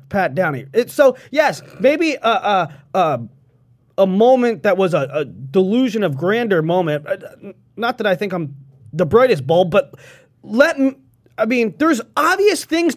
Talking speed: 160 wpm